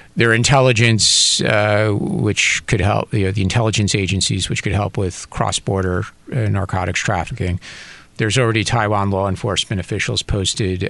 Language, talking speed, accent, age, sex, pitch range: English, 145 wpm, American, 50-69, male, 95-120 Hz